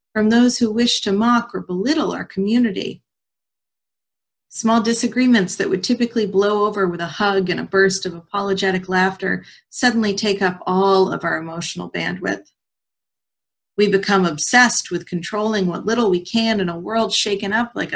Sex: female